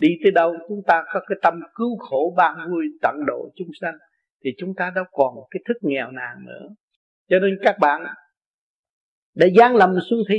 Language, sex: Vietnamese, male